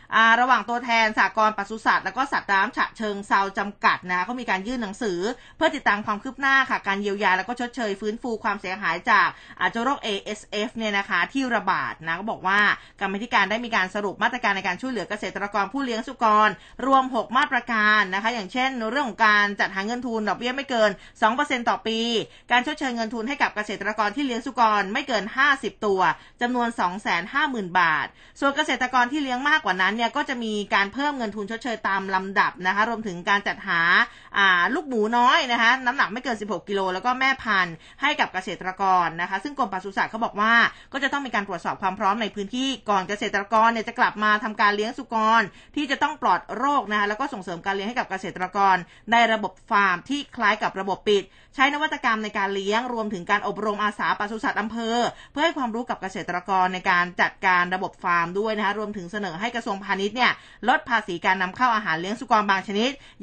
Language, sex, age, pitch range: Thai, female, 20-39, 195-245 Hz